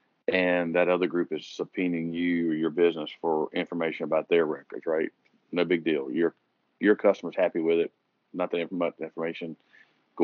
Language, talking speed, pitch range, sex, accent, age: English, 190 wpm, 80-90 Hz, male, American, 40-59